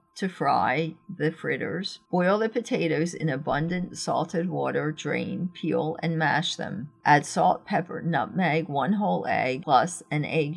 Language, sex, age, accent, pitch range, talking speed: English, female, 50-69, American, 150-180 Hz, 150 wpm